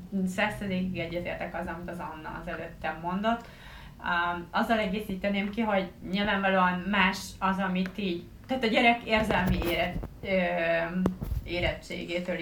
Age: 30-49